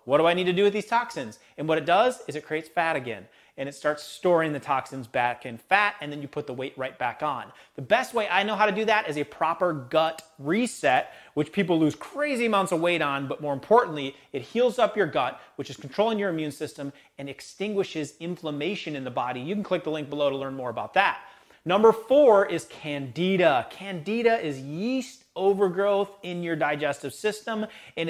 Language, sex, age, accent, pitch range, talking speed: English, male, 30-49, American, 150-200 Hz, 220 wpm